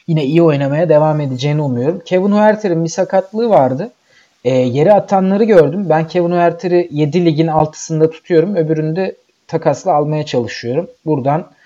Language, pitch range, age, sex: Turkish, 145-180 Hz, 40-59, male